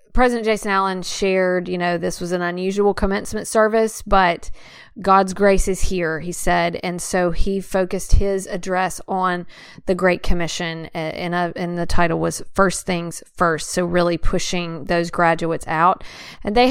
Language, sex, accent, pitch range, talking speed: English, female, American, 175-200 Hz, 165 wpm